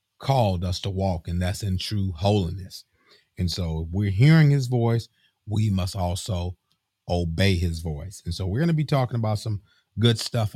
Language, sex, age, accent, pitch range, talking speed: English, male, 30-49, American, 90-105 Hz, 190 wpm